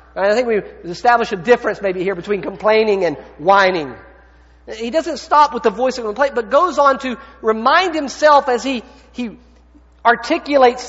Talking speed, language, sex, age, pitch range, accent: 165 wpm, English, male, 50-69, 170-255 Hz, American